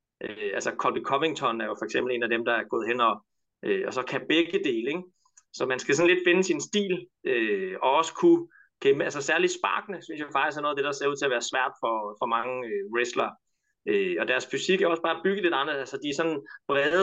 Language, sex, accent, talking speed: Danish, male, native, 255 wpm